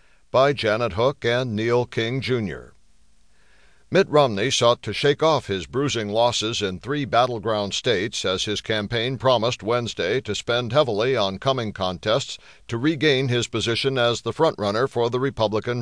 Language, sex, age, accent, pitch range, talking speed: English, male, 60-79, American, 105-130 Hz, 155 wpm